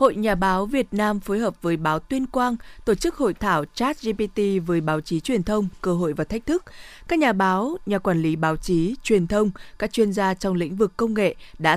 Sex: female